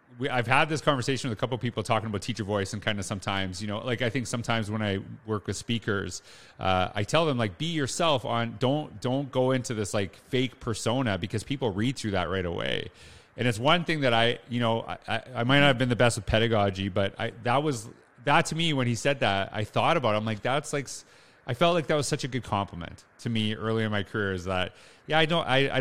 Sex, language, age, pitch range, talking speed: male, English, 30-49, 100-125 Hz, 260 wpm